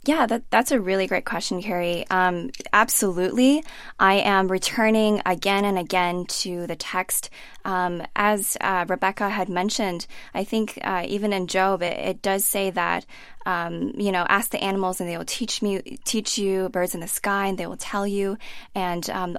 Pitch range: 180-215 Hz